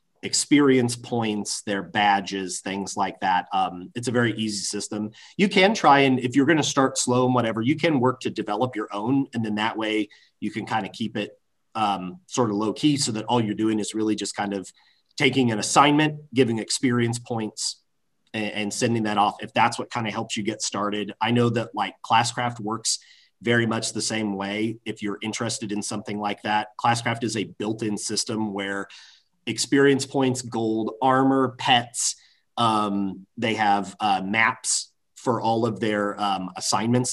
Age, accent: 40-59, American